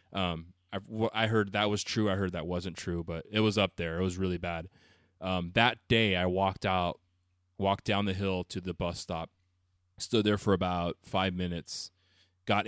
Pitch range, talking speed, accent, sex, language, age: 90-100 Hz, 205 wpm, American, male, English, 20-39